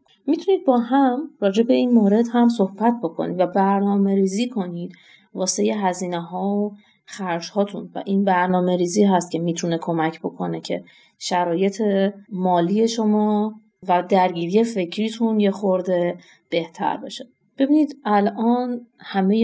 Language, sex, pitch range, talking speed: Persian, female, 185-230 Hz, 130 wpm